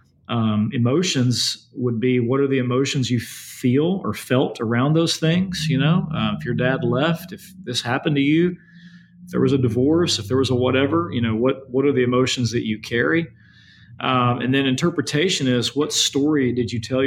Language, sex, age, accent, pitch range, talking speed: English, male, 40-59, American, 115-130 Hz, 200 wpm